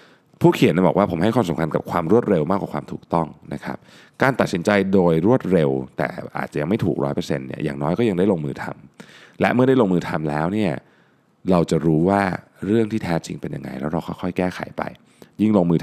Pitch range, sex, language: 80-110 Hz, male, Thai